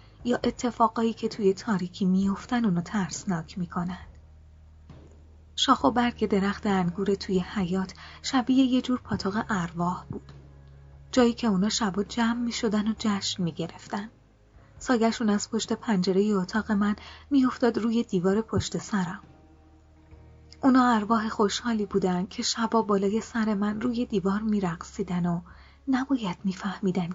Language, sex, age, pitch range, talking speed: Persian, female, 30-49, 175-225 Hz, 130 wpm